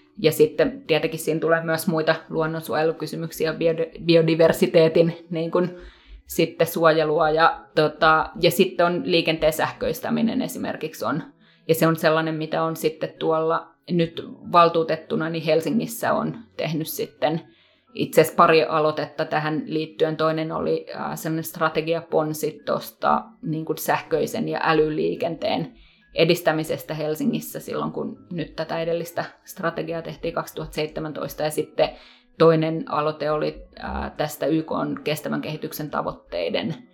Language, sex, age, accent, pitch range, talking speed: Finnish, female, 20-39, native, 155-170 Hz, 115 wpm